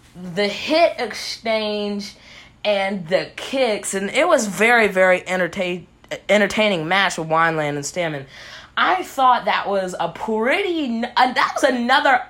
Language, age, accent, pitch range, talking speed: English, 20-39, American, 170-250 Hz, 135 wpm